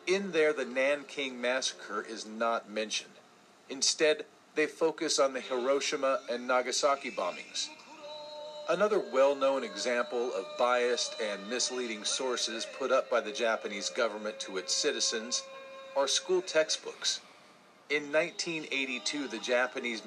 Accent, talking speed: American, 125 wpm